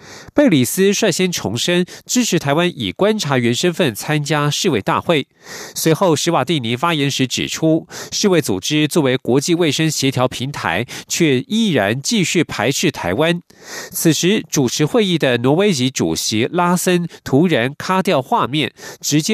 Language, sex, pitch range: German, male, 135-185 Hz